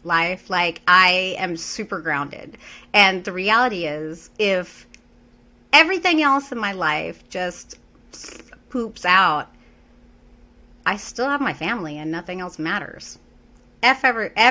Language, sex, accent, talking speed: English, female, American, 125 wpm